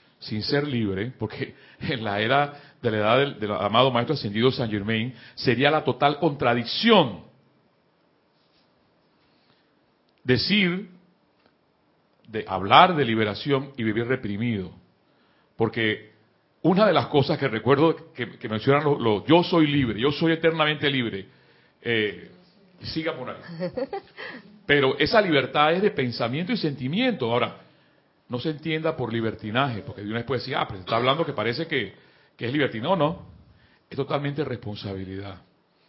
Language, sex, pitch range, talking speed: Spanish, male, 115-155 Hz, 150 wpm